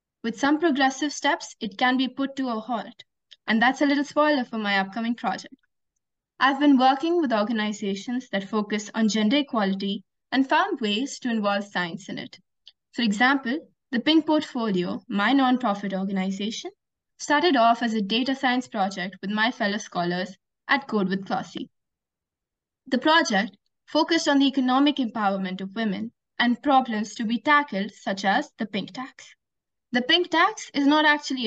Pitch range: 210-275 Hz